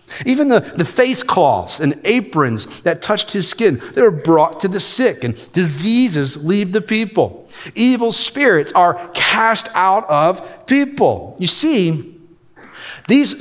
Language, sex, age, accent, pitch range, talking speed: English, male, 40-59, American, 170-225 Hz, 145 wpm